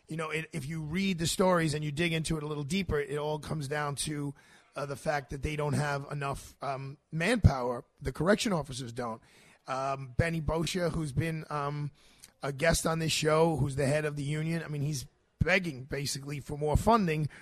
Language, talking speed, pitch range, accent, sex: English, 205 wpm, 145-180 Hz, American, male